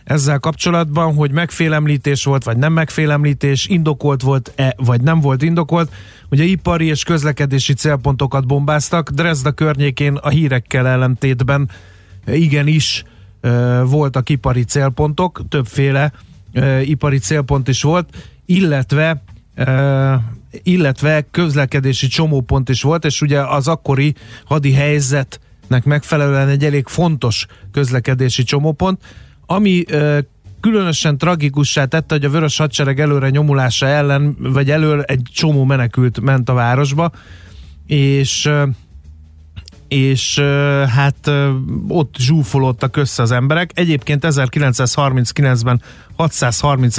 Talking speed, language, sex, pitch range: 115 wpm, Hungarian, male, 130-150 Hz